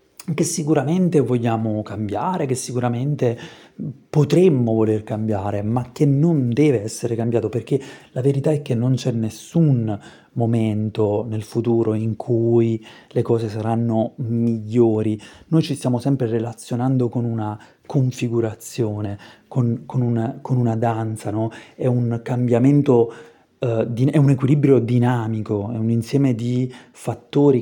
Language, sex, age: Italian, male, 30-49